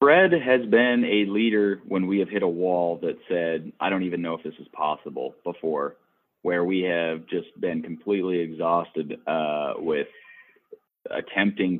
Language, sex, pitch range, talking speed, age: English, male, 80-100 Hz, 165 wpm, 30-49